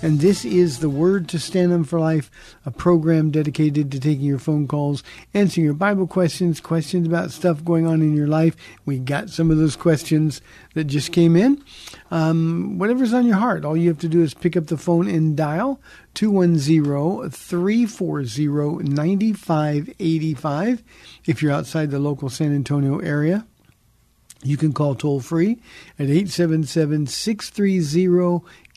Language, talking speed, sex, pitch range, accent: English, 150 wpm, male, 145-175 Hz, American